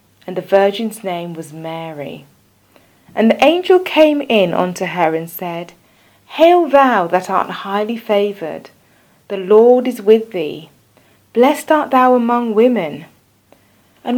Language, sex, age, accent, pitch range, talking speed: English, female, 30-49, British, 170-230 Hz, 135 wpm